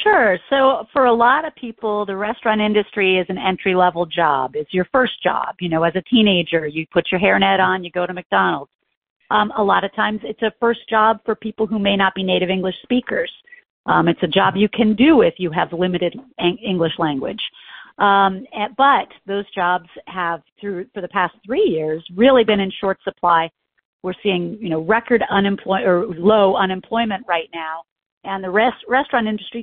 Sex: female